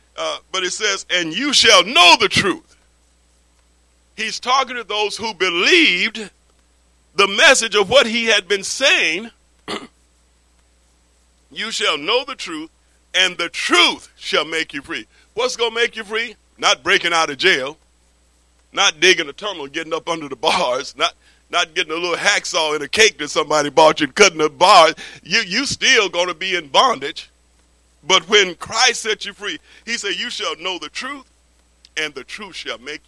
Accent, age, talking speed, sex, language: American, 50-69, 180 wpm, male, English